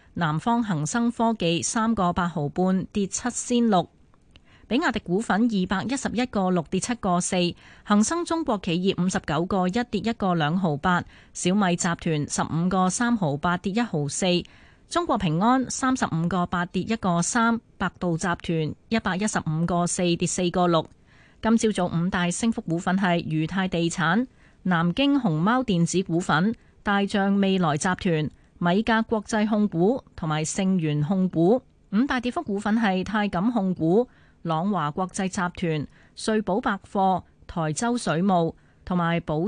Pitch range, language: 170-225 Hz, Chinese